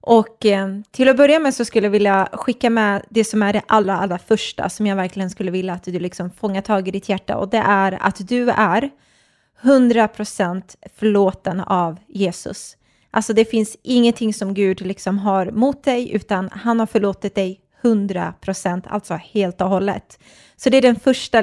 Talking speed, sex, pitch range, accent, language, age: 190 wpm, female, 195-230 Hz, native, Swedish, 20-39